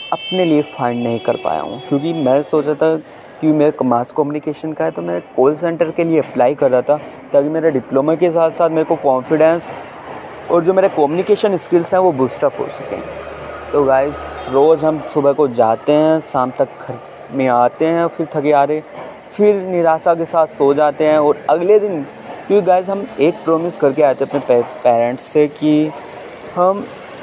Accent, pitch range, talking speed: native, 140-170 Hz, 185 wpm